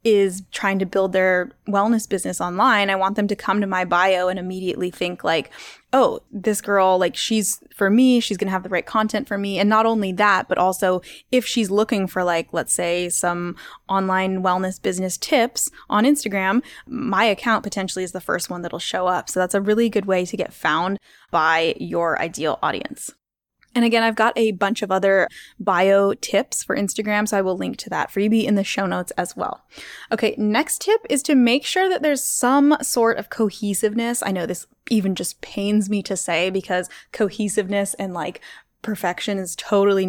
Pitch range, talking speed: 185-225 Hz, 200 wpm